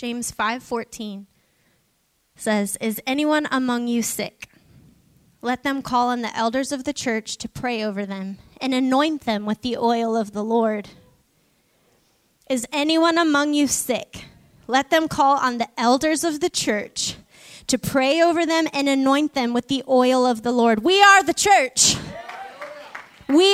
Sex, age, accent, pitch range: female, 10-29, American, 240-320 Hz